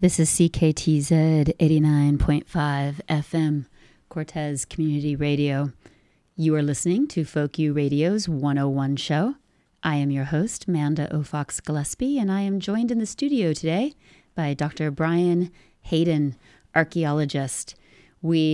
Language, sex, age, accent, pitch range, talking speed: English, female, 30-49, American, 150-180 Hz, 125 wpm